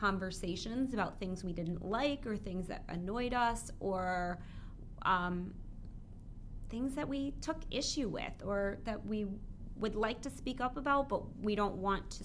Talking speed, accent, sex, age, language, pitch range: 160 wpm, American, female, 30-49, English, 180-205 Hz